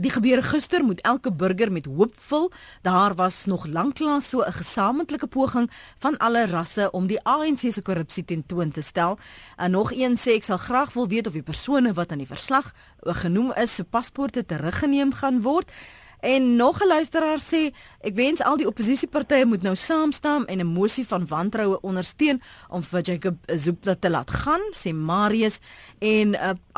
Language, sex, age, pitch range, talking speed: Dutch, female, 40-59, 190-275 Hz, 180 wpm